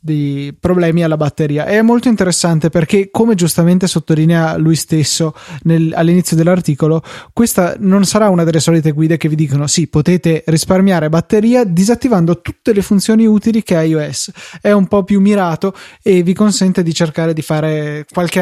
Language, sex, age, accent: Italian, male, 20-39, native